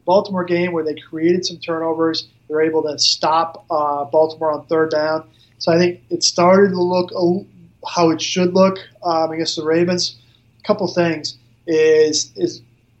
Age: 20-39